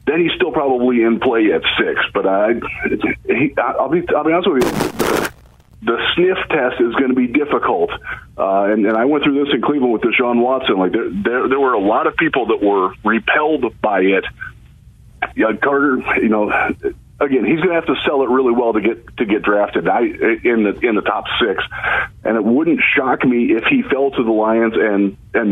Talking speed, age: 210 wpm, 40-59